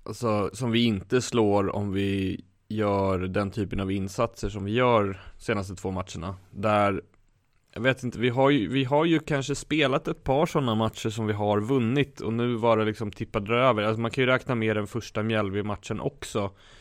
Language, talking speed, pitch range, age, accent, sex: Swedish, 200 wpm, 100-115 Hz, 20-39, native, male